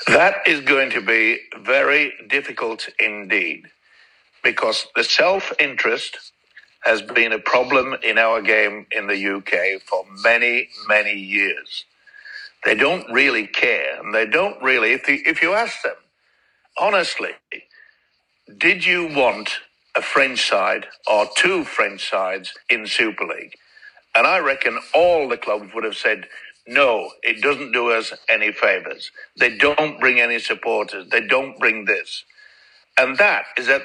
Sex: male